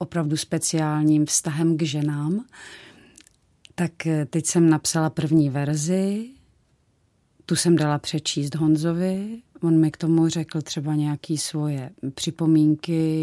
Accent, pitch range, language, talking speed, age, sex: native, 155-175 Hz, Czech, 115 wpm, 30-49, female